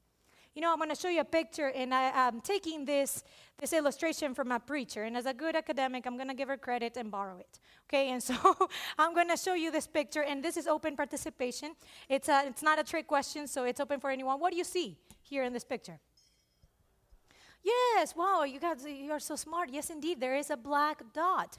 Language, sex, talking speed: English, female, 230 wpm